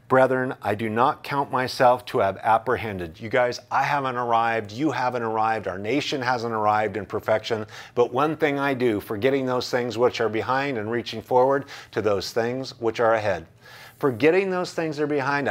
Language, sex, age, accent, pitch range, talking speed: English, male, 40-59, American, 115-145 Hz, 190 wpm